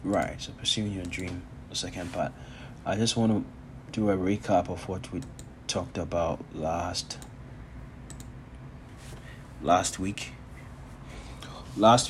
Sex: male